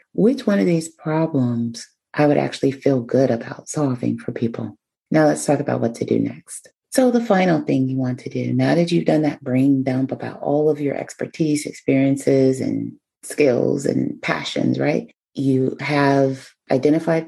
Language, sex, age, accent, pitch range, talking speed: English, female, 30-49, American, 130-165 Hz, 175 wpm